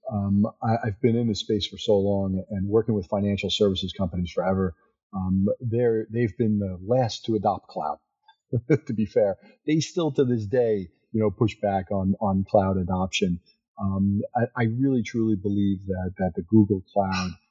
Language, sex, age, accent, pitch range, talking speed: English, male, 40-59, American, 95-110 Hz, 180 wpm